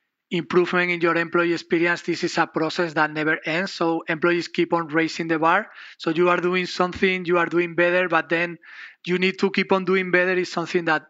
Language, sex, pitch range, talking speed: English, male, 165-185 Hz, 215 wpm